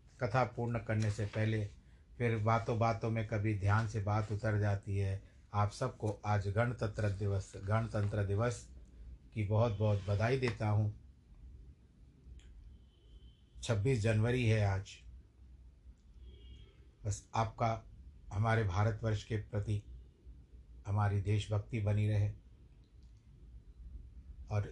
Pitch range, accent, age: 80-110 Hz, native, 50-69